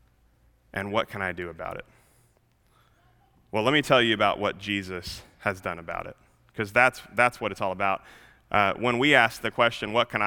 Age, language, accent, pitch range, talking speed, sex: 30-49, English, American, 100-120 Hz, 200 wpm, male